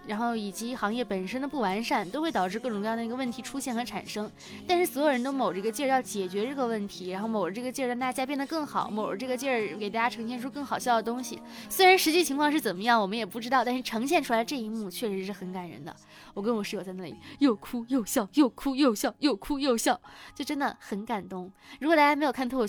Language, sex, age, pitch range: Chinese, female, 20-39, 210-270 Hz